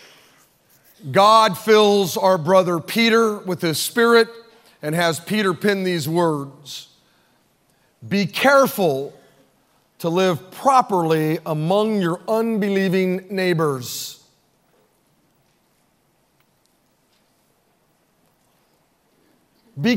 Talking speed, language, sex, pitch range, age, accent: 70 wpm, English, male, 165-230 Hz, 40-59, American